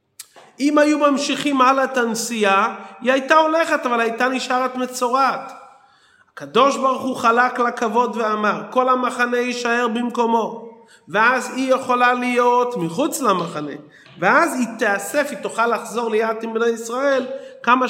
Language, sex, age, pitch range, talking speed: Hebrew, male, 30-49, 210-255 Hz, 135 wpm